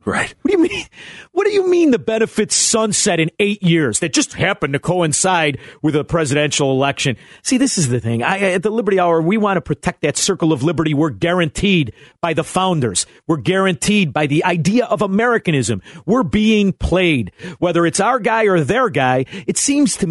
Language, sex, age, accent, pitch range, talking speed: English, male, 40-59, American, 140-190 Hz, 200 wpm